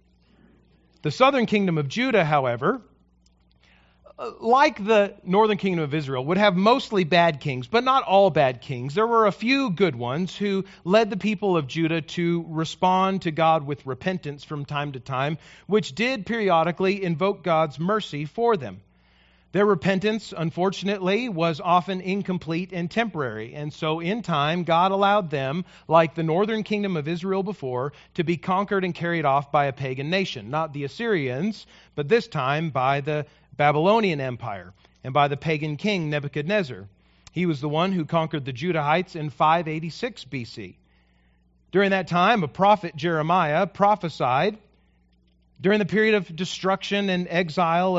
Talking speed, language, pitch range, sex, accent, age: 155 wpm, English, 145-195 Hz, male, American, 40-59